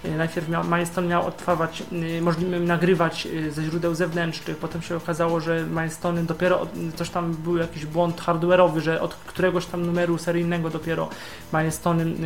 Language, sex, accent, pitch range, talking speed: Polish, male, native, 165-225 Hz, 140 wpm